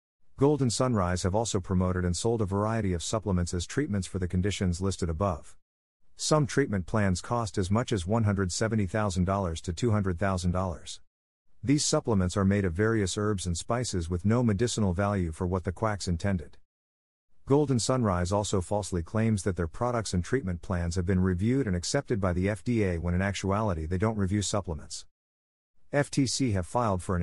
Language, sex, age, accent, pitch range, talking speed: English, male, 50-69, American, 90-115 Hz, 170 wpm